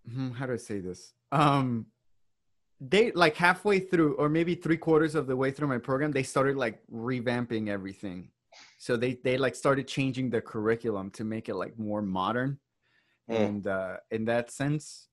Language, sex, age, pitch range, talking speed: English, male, 20-39, 110-135 Hz, 175 wpm